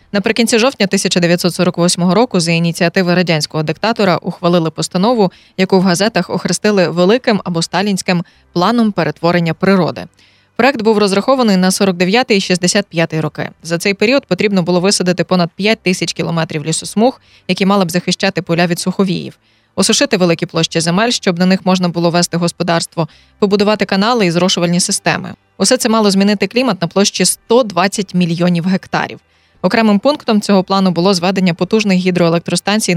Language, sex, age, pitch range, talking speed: Ukrainian, female, 20-39, 175-205 Hz, 145 wpm